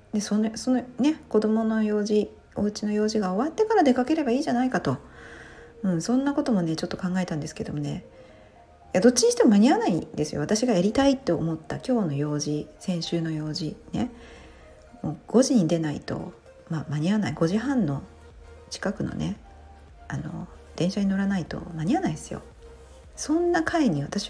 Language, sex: Japanese, female